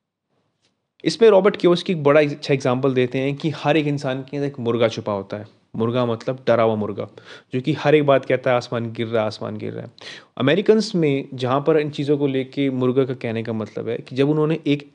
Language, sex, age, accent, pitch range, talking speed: Hindi, male, 30-49, native, 115-145 Hz, 230 wpm